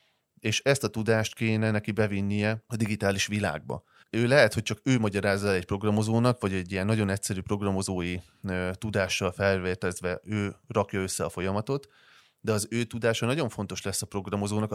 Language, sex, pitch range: Hungarian, male, 95-110 Hz